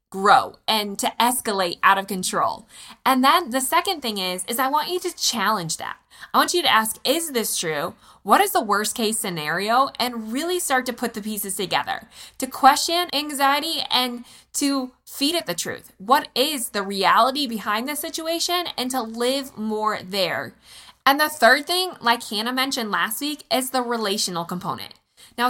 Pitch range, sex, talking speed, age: 210-275 Hz, female, 180 wpm, 20-39